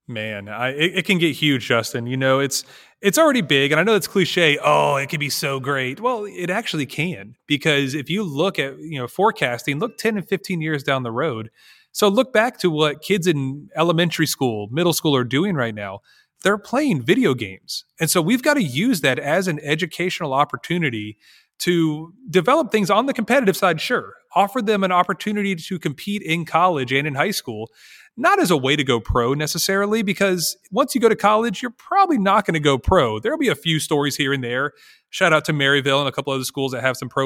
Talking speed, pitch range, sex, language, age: 220 wpm, 135-190 Hz, male, English, 30-49